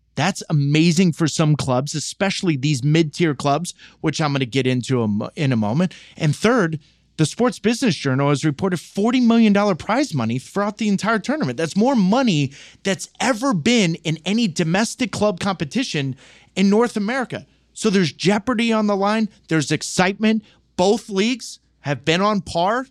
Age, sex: 30-49, male